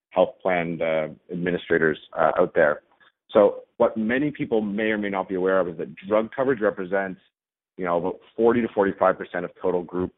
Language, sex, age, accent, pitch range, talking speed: English, male, 40-59, American, 90-105 Hz, 170 wpm